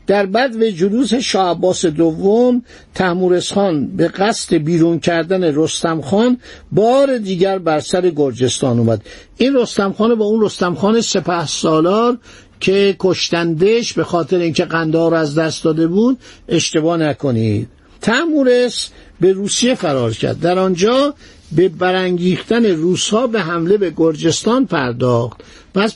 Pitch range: 160-210 Hz